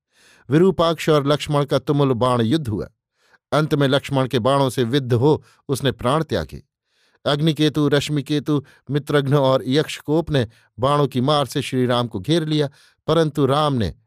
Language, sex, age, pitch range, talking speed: Hindi, male, 50-69, 125-150 Hz, 155 wpm